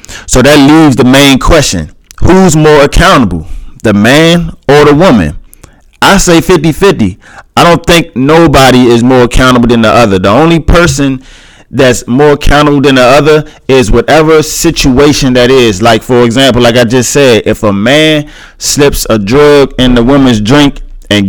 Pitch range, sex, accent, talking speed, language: 110-140 Hz, male, American, 165 wpm, English